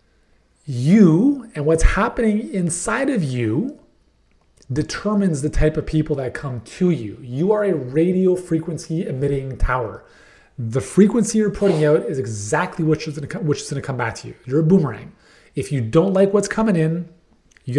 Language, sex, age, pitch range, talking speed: English, male, 30-49, 120-175 Hz, 165 wpm